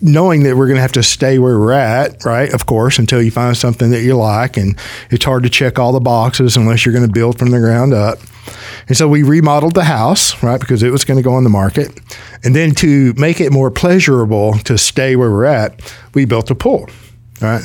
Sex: male